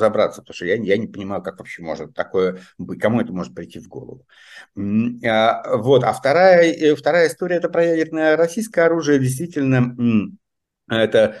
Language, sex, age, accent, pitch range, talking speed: Russian, male, 50-69, native, 100-135 Hz, 165 wpm